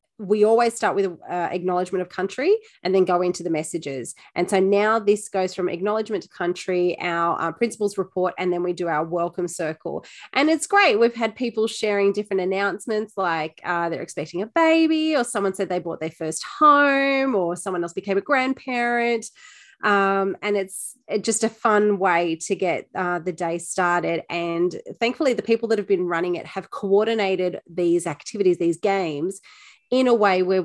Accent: Australian